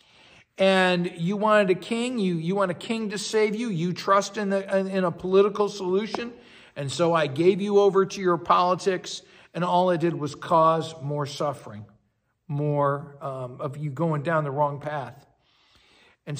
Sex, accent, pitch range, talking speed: male, American, 155-195 Hz, 175 wpm